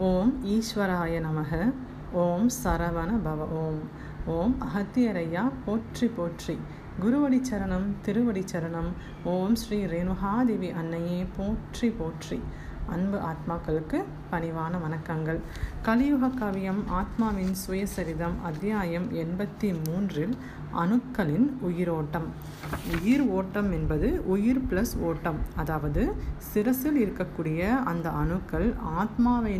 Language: Tamil